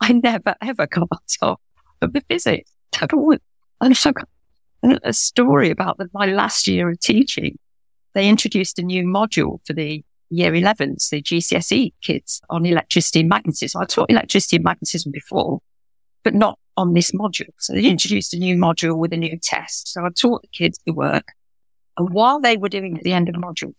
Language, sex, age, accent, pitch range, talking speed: English, female, 50-69, British, 170-245 Hz, 195 wpm